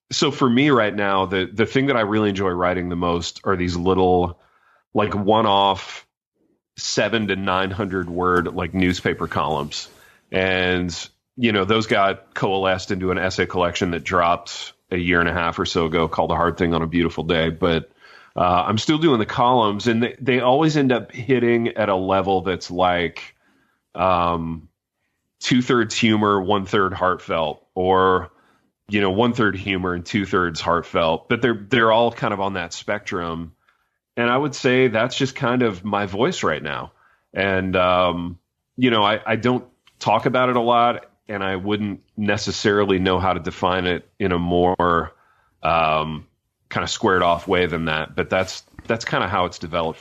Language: English